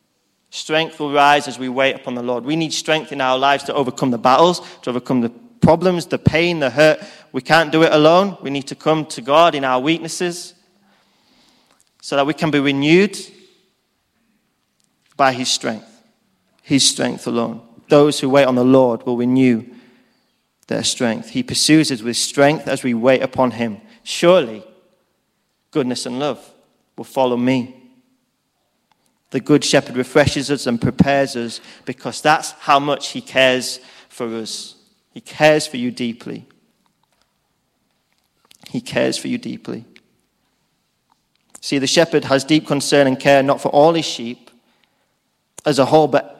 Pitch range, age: 130-155 Hz, 30-49